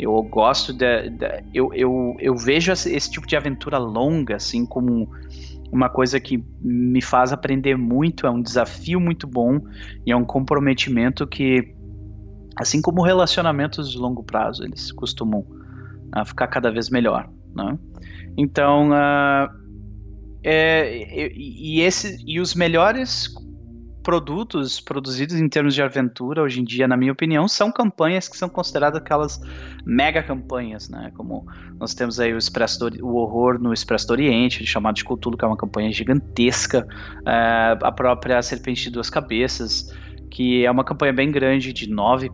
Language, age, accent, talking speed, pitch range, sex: Portuguese, 20-39, Brazilian, 155 wpm, 110-140 Hz, male